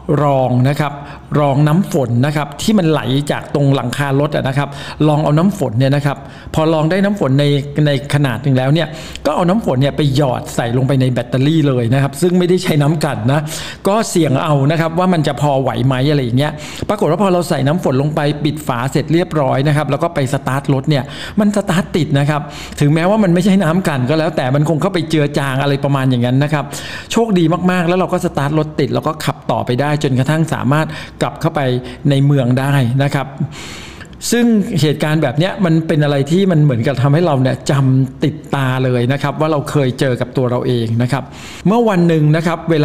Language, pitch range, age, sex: Thai, 135-165 Hz, 60-79, male